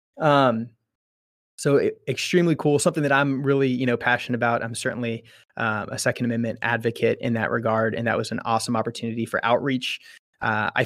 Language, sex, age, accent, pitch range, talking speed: English, male, 20-39, American, 115-120 Hz, 180 wpm